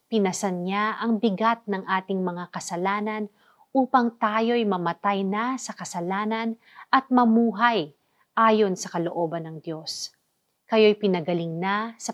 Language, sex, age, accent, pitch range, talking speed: Filipino, female, 40-59, native, 180-230 Hz, 125 wpm